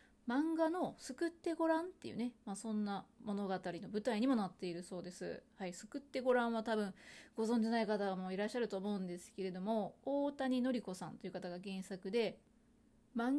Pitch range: 200-260 Hz